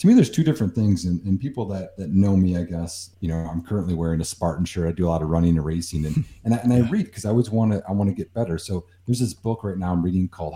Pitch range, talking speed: 90-145 Hz, 320 wpm